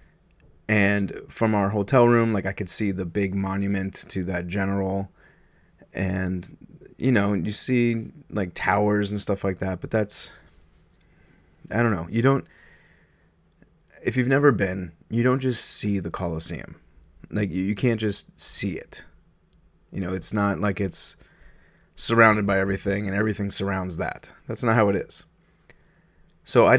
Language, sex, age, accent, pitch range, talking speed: English, male, 30-49, American, 95-115 Hz, 155 wpm